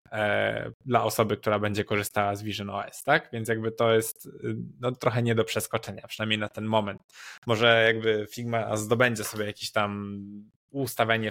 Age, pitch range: 20-39, 110-120 Hz